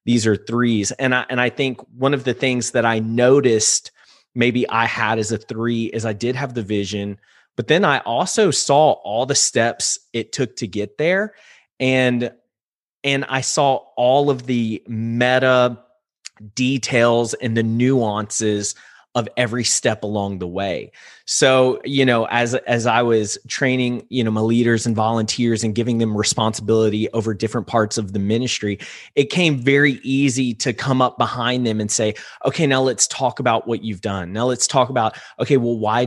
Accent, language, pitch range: American, English, 115-135 Hz